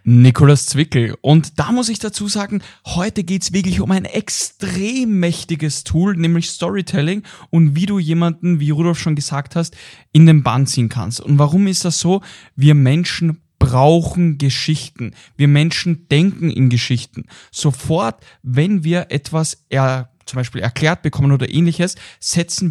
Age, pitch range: 10-29, 135-170 Hz